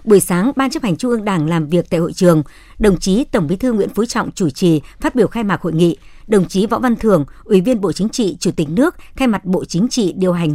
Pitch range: 175-235 Hz